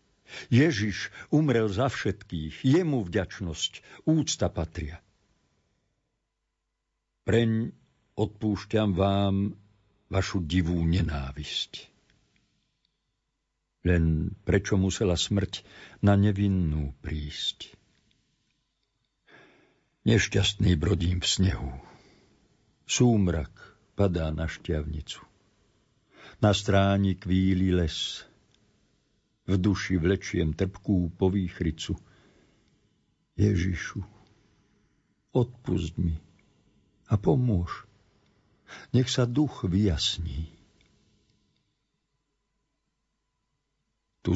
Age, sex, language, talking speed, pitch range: 60-79, male, Slovak, 65 wpm, 85-105 Hz